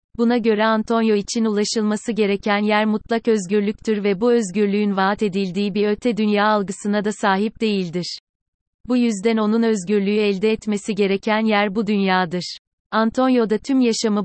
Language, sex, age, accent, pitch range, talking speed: Turkish, female, 30-49, native, 195-220 Hz, 145 wpm